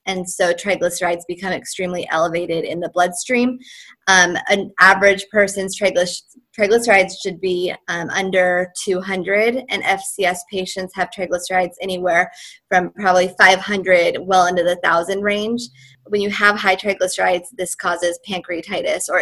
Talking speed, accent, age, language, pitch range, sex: 130 wpm, American, 20-39, English, 180-205 Hz, female